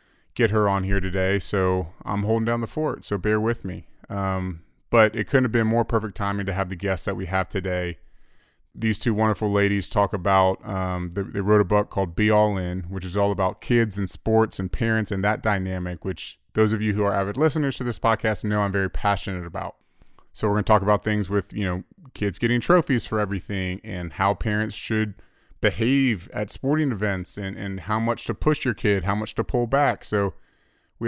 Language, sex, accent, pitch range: English, male, American, 95-110 Hz